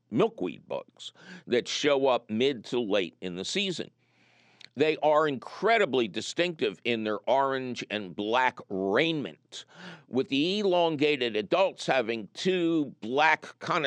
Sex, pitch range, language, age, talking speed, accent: male, 120-175 Hz, English, 60-79, 125 wpm, American